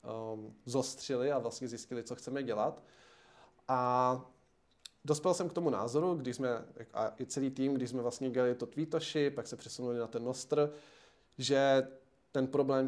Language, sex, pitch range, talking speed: Czech, male, 120-135 Hz, 155 wpm